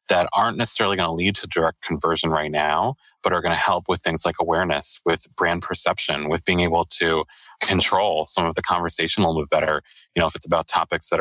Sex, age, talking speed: male, 30-49, 220 wpm